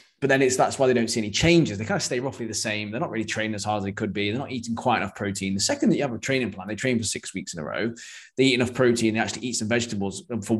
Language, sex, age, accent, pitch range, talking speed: English, male, 20-39, British, 100-125 Hz, 335 wpm